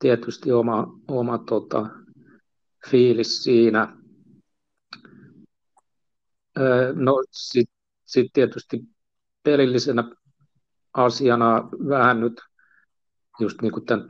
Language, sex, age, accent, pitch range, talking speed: Finnish, male, 60-79, native, 120-140 Hz, 50 wpm